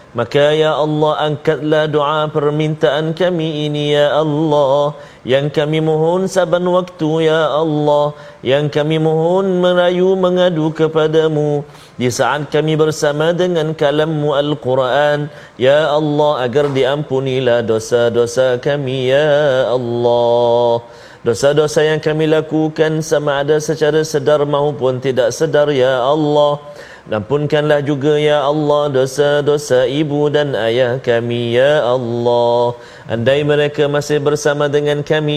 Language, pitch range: Malayalam, 140-155 Hz